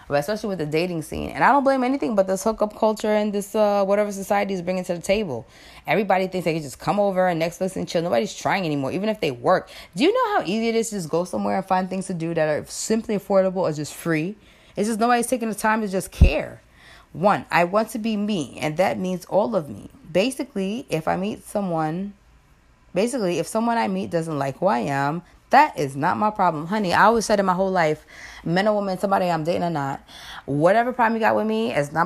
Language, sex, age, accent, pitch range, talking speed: English, female, 20-39, American, 165-220 Hz, 245 wpm